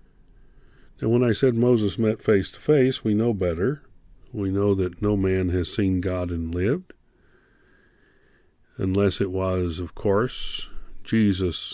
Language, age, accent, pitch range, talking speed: English, 50-69, American, 90-120 Hz, 145 wpm